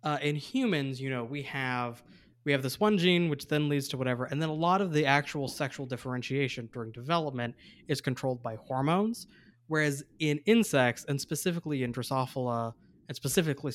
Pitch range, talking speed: 125-155 Hz, 175 wpm